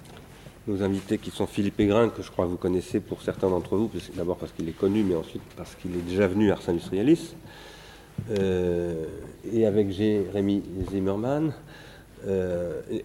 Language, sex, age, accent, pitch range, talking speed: French, male, 40-59, French, 90-110 Hz, 165 wpm